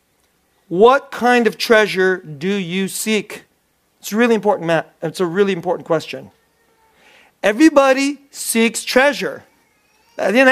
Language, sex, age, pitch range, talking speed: English, male, 40-59, 170-225 Hz, 120 wpm